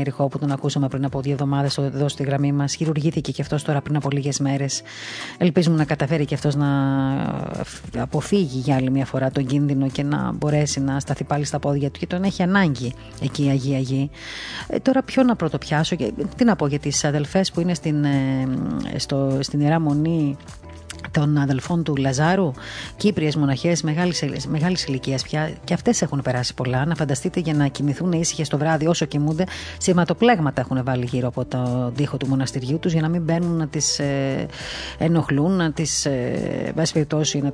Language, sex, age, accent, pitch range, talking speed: Greek, female, 30-49, native, 135-160 Hz, 175 wpm